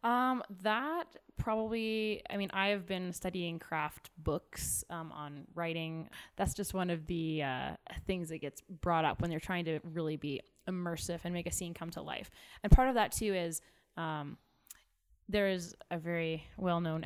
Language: English